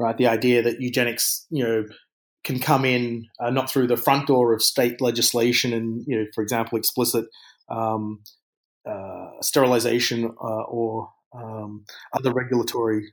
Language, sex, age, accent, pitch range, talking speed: English, male, 30-49, Australian, 115-130 Hz, 150 wpm